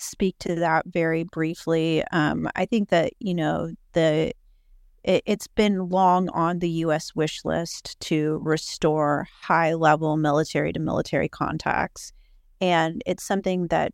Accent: American